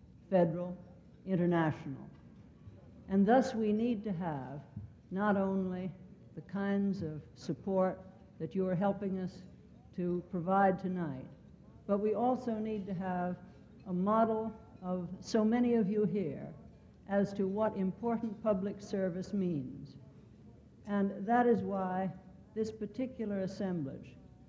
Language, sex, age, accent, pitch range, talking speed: English, female, 60-79, American, 175-205 Hz, 125 wpm